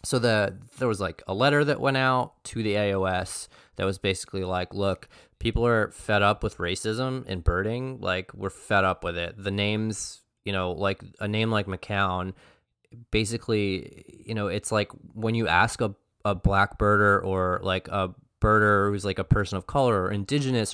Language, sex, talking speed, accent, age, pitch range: English, male, 190 wpm, American, 20-39, 95-115 Hz